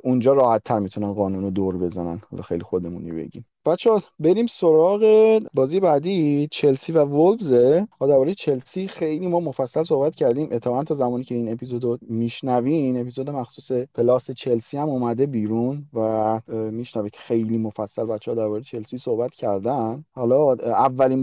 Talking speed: 140 wpm